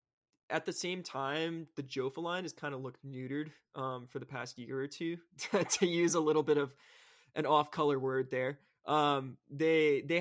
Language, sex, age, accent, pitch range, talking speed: English, male, 20-39, American, 125-145 Hz, 190 wpm